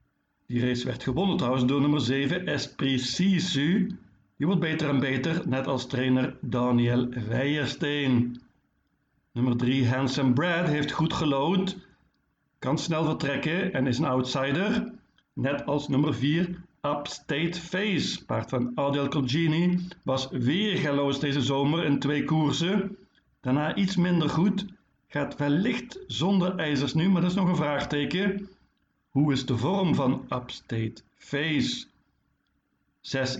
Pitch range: 125-165 Hz